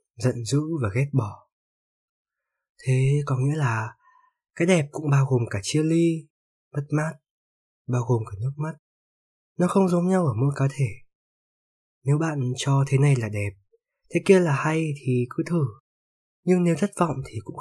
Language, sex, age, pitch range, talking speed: Vietnamese, male, 20-39, 110-150 Hz, 175 wpm